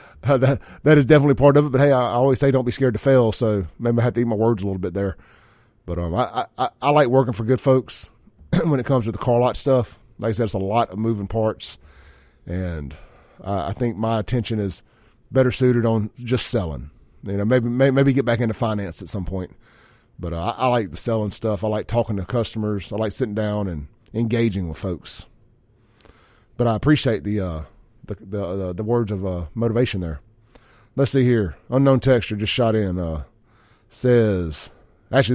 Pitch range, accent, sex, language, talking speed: 105-125 Hz, American, male, English, 210 wpm